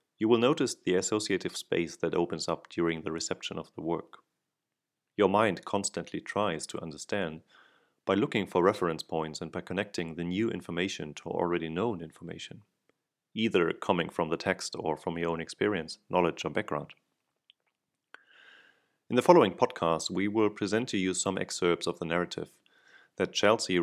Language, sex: English, male